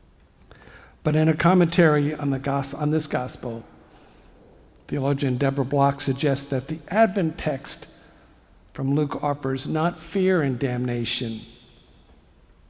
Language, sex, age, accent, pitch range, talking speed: English, male, 60-79, American, 110-155 Hz, 110 wpm